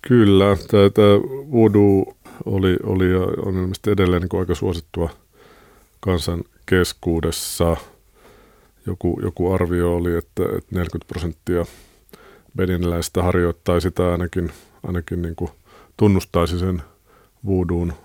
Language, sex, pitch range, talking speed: Finnish, male, 85-95 Hz, 105 wpm